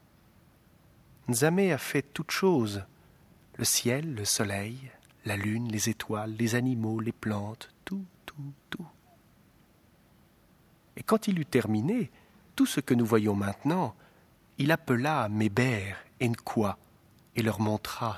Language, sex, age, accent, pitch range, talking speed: French, male, 40-59, French, 110-150 Hz, 130 wpm